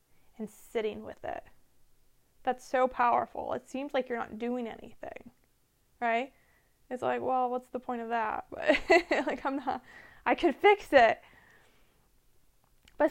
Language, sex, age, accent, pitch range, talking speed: English, female, 20-39, American, 225-270 Hz, 145 wpm